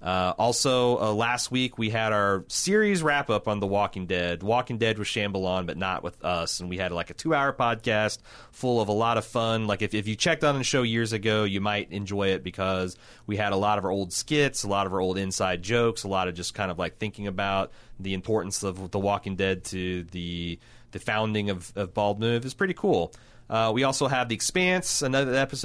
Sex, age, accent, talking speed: male, 30-49, American, 235 wpm